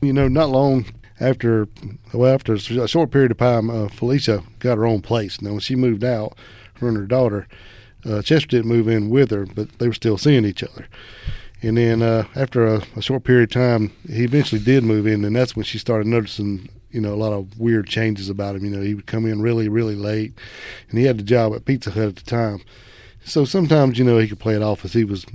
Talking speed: 240 wpm